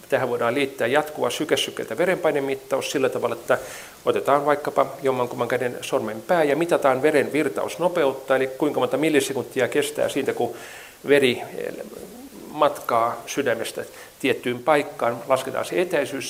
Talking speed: 125 wpm